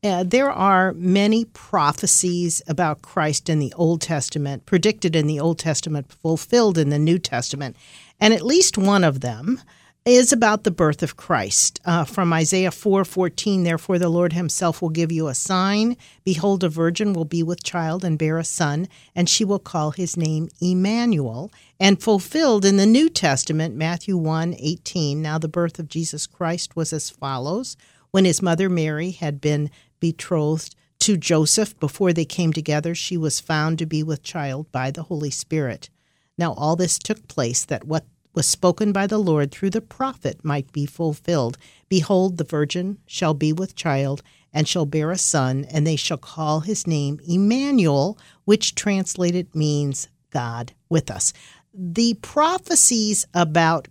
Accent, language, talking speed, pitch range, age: American, English, 170 wpm, 150-190 Hz, 50-69